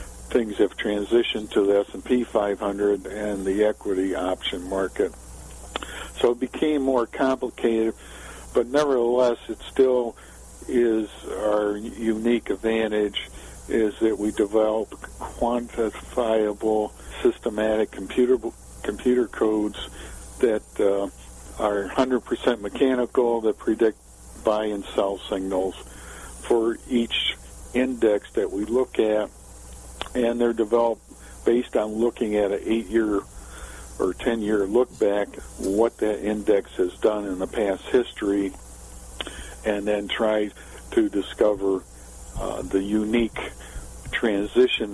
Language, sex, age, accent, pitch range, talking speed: English, male, 50-69, American, 95-115 Hz, 110 wpm